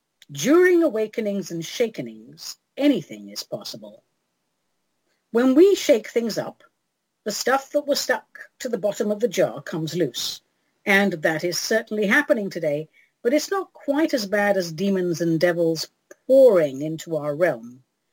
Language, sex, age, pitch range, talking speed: English, female, 50-69, 170-260 Hz, 150 wpm